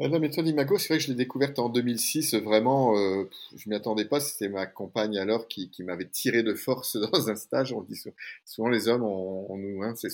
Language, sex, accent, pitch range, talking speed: French, male, French, 100-135 Hz, 245 wpm